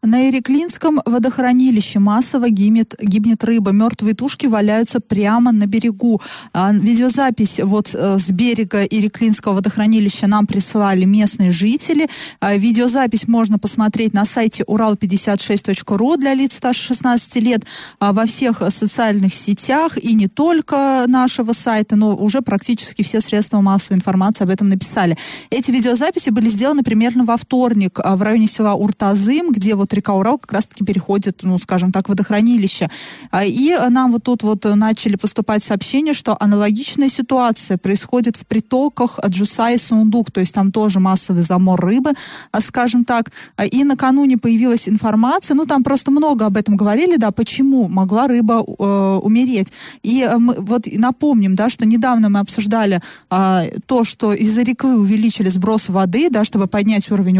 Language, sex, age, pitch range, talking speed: Russian, female, 20-39, 205-245 Hz, 145 wpm